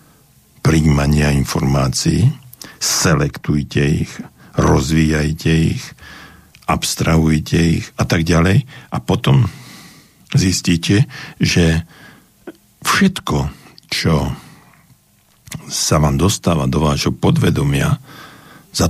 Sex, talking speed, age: male, 75 wpm, 60-79